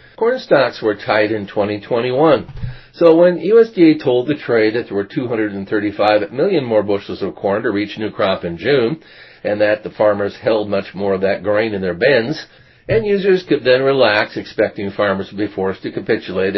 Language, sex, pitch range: English, male, 95-115 Hz